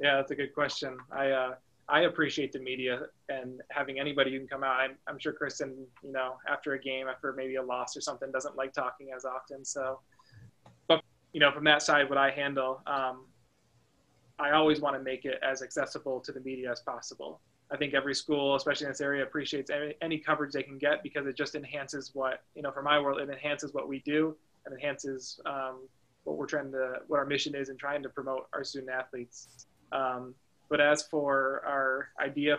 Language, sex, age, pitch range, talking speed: English, male, 20-39, 130-145 Hz, 210 wpm